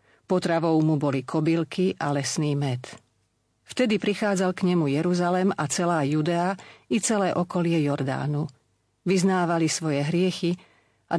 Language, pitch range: Slovak, 140-180 Hz